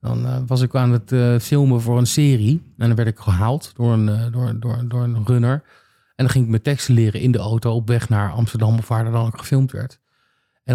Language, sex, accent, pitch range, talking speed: Dutch, male, Dutch, 115-140 Hz, 235 wpm